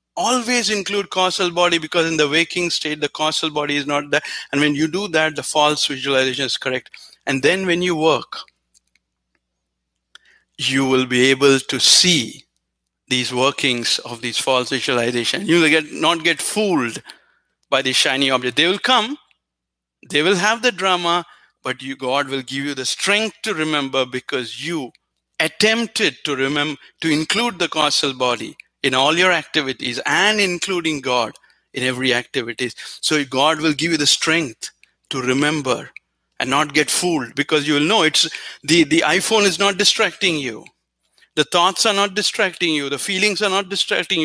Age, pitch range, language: 60-79, 130-175 Hz, English